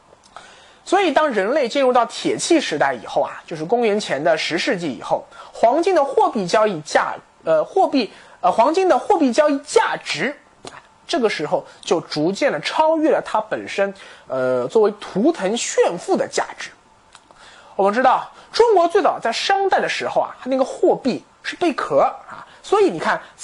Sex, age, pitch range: male, 20-39, 225-380 Hz